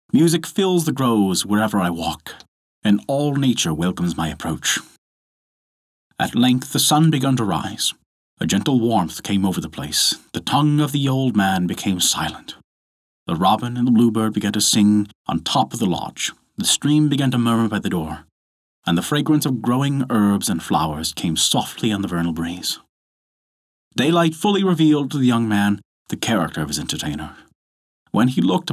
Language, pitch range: English, 80-130 Hz